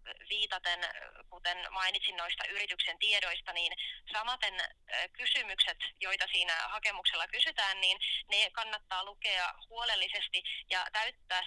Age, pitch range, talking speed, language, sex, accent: 20-39, 180-210 Hz, 105 wpm, Finnish, female, native